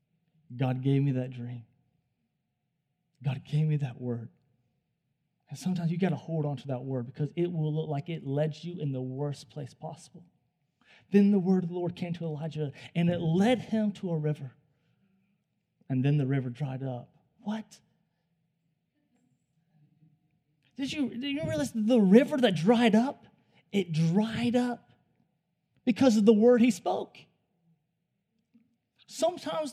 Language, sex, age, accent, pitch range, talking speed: English, male, 30-49, American, 150-220 Hz, 155 wpm